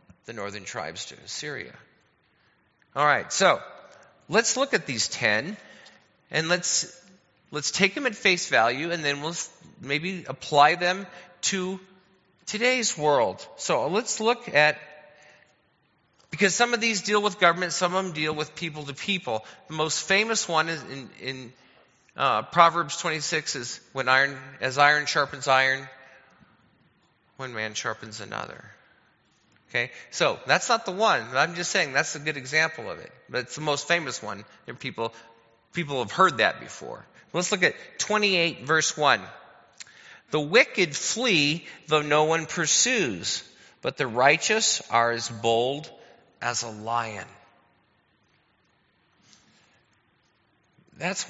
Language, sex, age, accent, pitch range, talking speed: English, male, 40-59, American, 135-185 Hz, 140 wpm